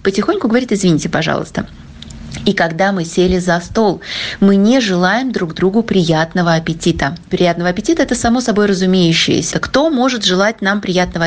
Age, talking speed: 30-49, 150 wpm